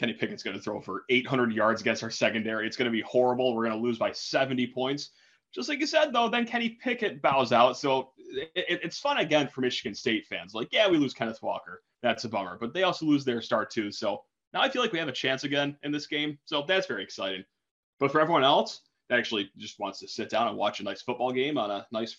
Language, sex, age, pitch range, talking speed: English, male, 20-39, 110-150 Hz, 255 wpm